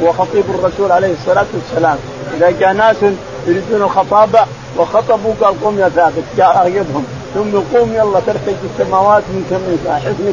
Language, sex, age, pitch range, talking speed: Arabic, male, 50-69, 175-225 Hz, 150 wpm